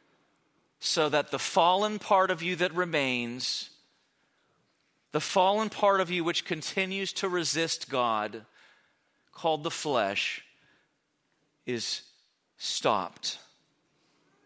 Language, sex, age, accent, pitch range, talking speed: English, male, 40-59, American, 160-205 Hz, 100 wpm